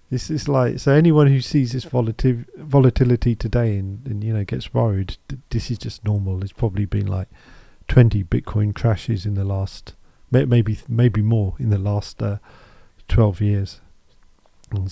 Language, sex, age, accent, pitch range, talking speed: English, male, 40-59, British, 105-130 Hz, 160 wpm